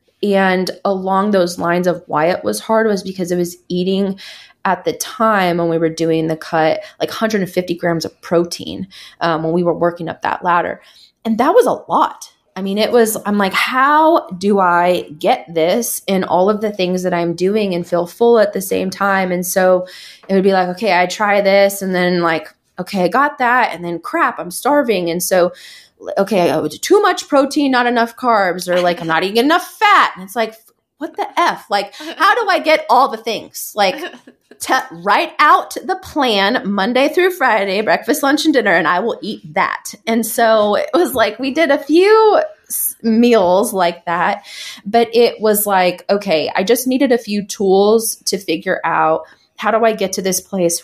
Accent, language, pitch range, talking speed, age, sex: American, English, 180-230 Hz, 200 wpm, 20-39, female